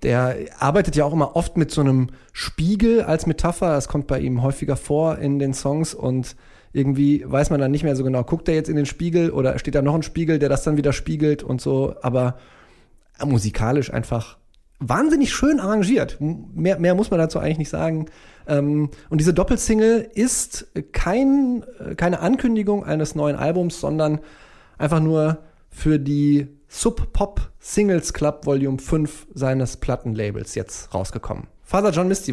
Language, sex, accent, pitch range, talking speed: German, male, German, 135-175 Hz, 170 wpm